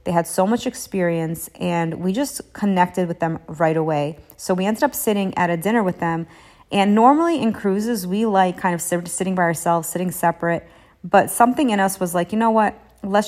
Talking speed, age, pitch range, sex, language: 210 wpm, 30-49, 170-200 Hz, female, English